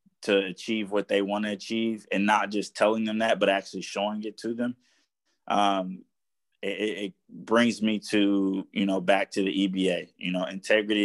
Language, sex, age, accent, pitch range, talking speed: English, male, 20-39, American, 95-105 Hz, 185 wpm